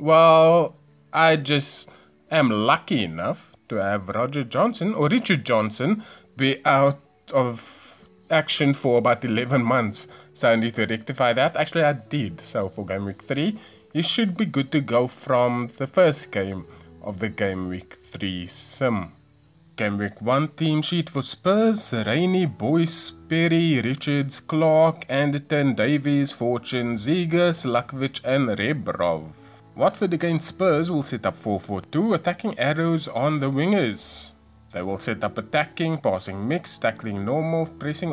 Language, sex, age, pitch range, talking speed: English, male, 20-39, 105-160 Hz, 145 wpm